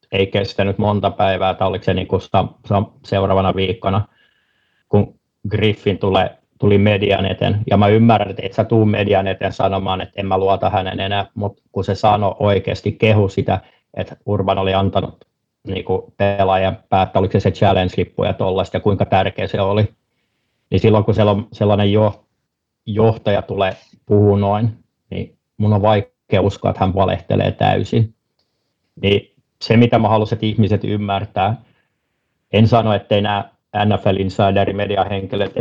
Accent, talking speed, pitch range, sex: native, 150 wpm, 95-110 Hz, male